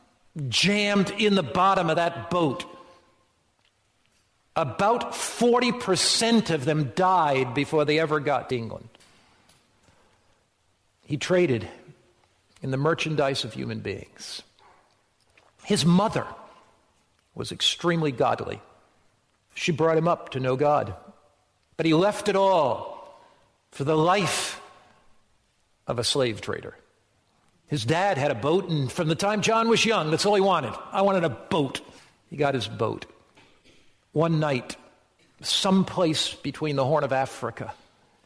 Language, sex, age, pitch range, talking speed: English, male, 50-69, 125-185 Hz, 130 wpm